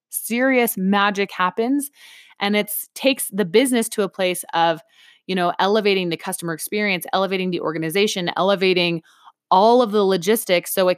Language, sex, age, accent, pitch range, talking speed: English, female, 20-39, American, 170-215 Hz, 155 wpm